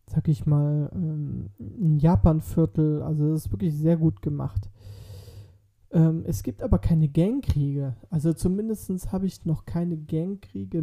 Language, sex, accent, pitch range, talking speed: German, male, German, 105-165 Hz, 145 wpm